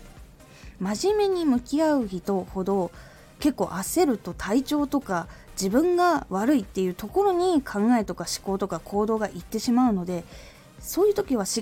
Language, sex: Japanese, female